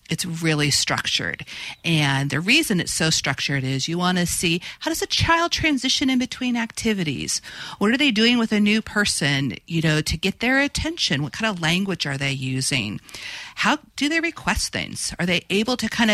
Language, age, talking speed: English, 40-59, 195 wpm